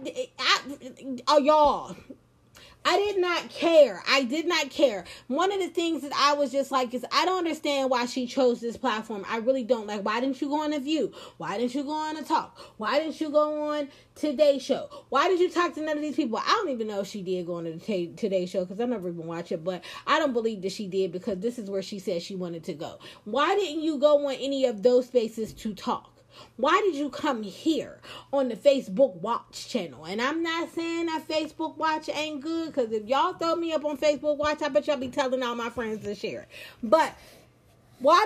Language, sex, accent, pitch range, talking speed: English, female, American, 220-300 Hz, 235 wpm